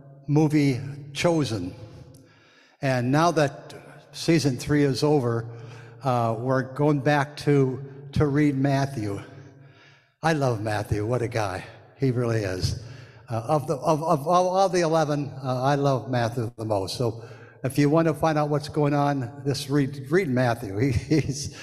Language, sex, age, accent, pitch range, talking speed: English, male, 60-79, American, 125-150 Hz, 155 wpm